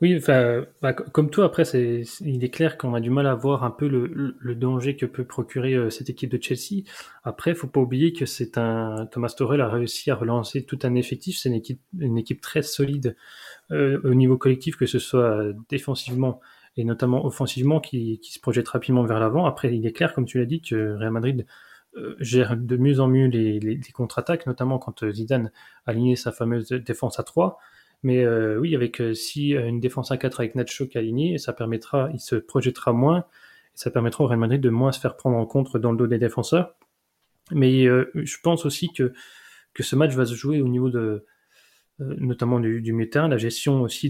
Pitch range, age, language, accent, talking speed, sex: 120-140 Hz, 20-39, French, French, 220 wpm, male